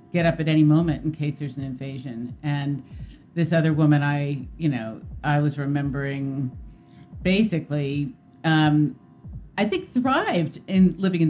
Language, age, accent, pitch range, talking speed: English, 50-69, American, 150-185 Hz, 150 wpm